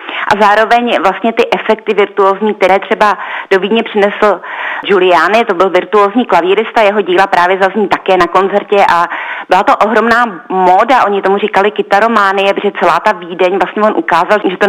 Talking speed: 170 wpm